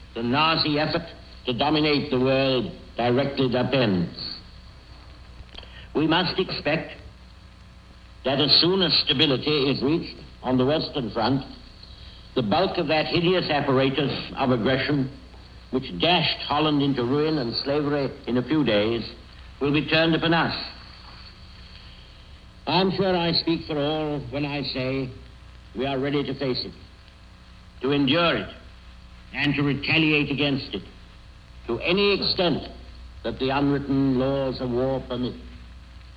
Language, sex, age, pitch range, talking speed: English, male, 70-89, 100-145 Hz, 135 wpm